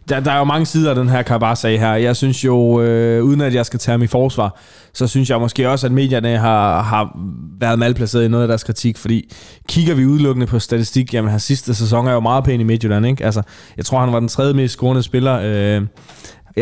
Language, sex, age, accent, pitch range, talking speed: Danish, male, 20-39, native, 115-135 Hz, 250 wpm